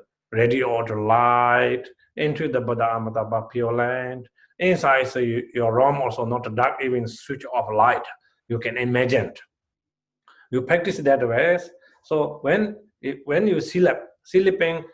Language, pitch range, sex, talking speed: English, 115-155 Hz, male, 135 wpm